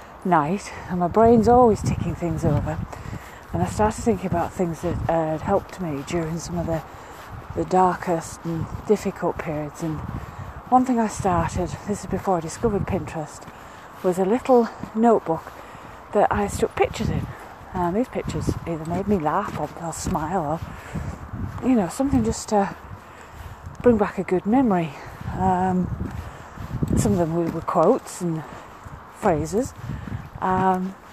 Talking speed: 150 wpm